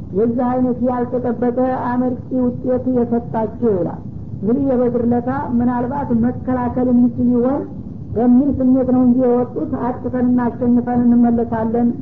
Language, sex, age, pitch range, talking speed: Amharic, female, 50-69, 240-255 Hz, 105 wpm